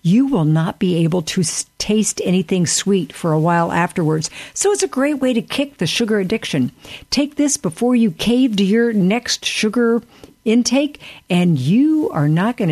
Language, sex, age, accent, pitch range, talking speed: English, female, 60-79, American, 160-235 Hz, 180 wpm